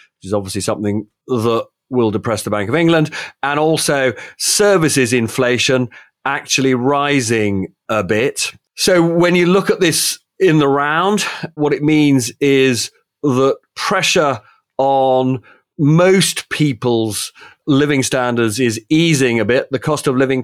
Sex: male